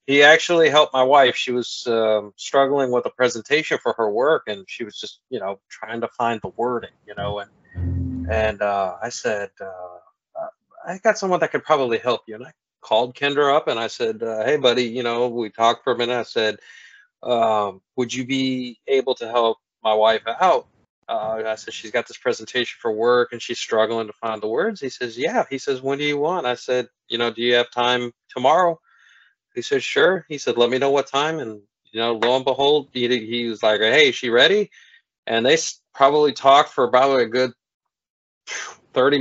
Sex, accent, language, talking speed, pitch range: male, American, English, 215 wpm, 120-160 Hz